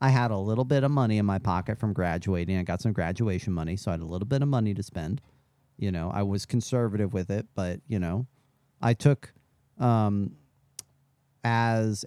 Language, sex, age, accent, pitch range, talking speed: English, male, 40-59, American, 95-135 Hz, 205 wpm